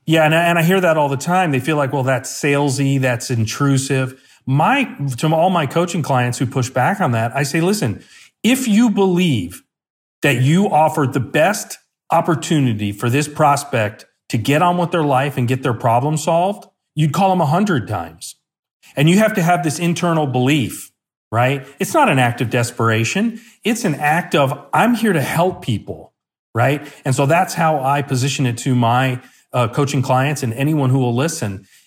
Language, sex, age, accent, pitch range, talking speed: English, male, 40-59, American, 120-160 Hz, 190 wpm